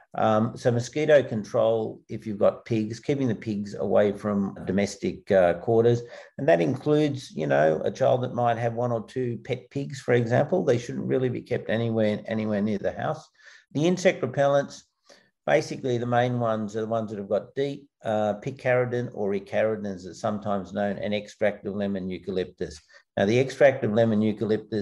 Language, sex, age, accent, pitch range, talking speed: English, male, 50-69, Australian, 100-120 Hz, 185 wpm